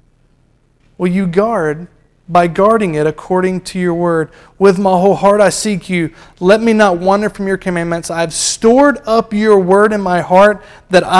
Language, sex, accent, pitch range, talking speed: English, male, American, 175-230 Hz, 180 wpm